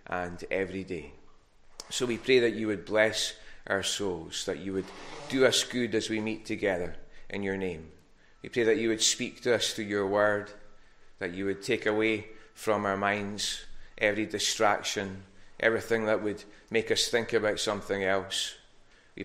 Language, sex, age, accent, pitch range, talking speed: English, male, 20-39, British, 95-110 Hz, 175 wpm